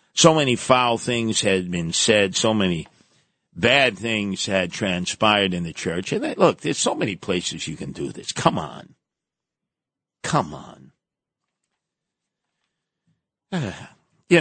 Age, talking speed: 50-69, 130 wpm